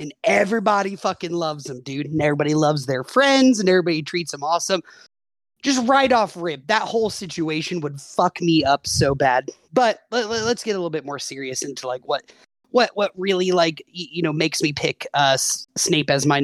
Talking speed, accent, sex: 195 wpm, American, male